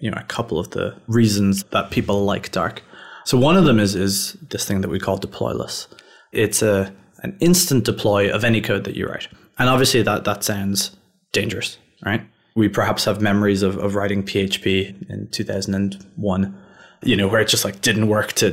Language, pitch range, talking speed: English, 100-115 Hz, 195 wpm